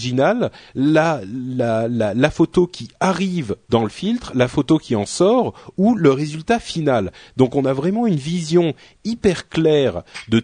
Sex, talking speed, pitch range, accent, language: male, 155 wpm, 115-165 Hz, French, French